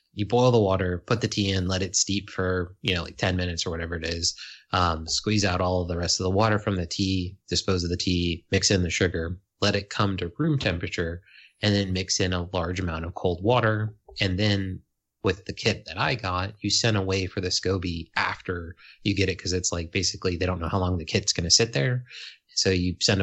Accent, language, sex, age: American, English, male, 30-49